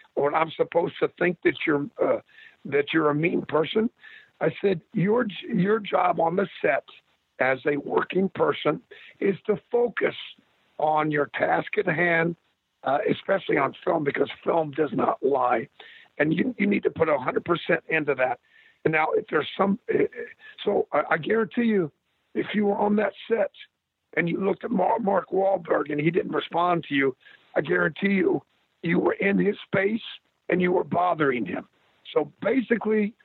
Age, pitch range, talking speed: 50-69, 175-250 Hz, 170 wpm